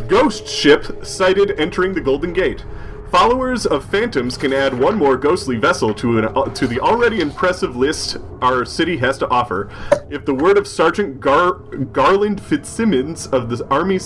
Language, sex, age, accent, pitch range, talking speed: English, male, 30-49, American, 125-185 Hz, 170 wpm